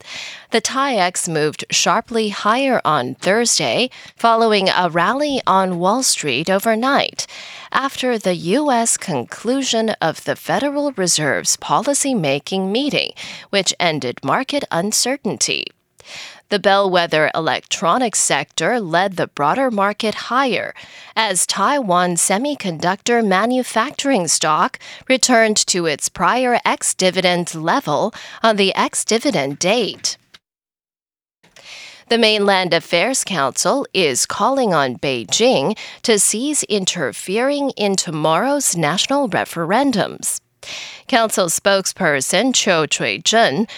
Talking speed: 95 wpm